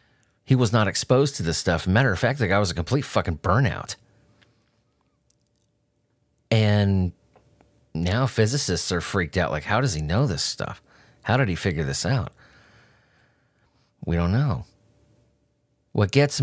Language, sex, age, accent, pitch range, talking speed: English, male, 30-49, American, 95-120 Hz, 150 wpm